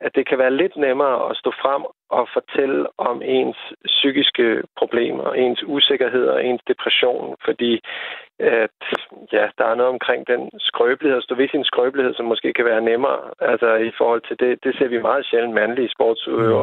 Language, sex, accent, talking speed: Danish, male, native, 190 wpm